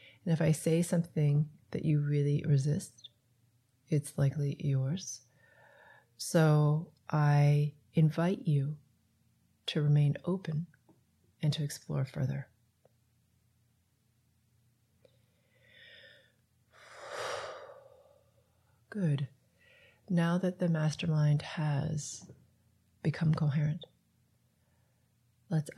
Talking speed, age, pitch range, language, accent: 75 wpm, 30-49, 115-160 Hz, English, American